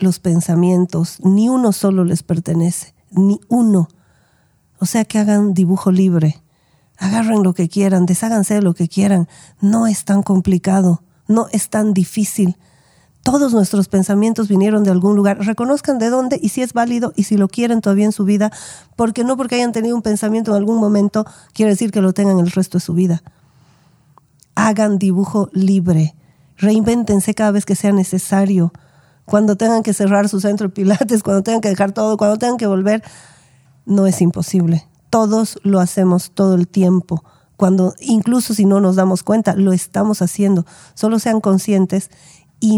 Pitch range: 180-215 Hz